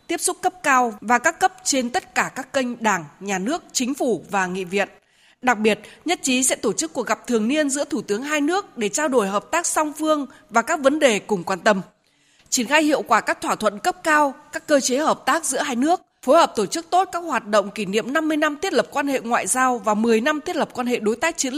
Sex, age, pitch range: female, 20-39, 220-300 Hz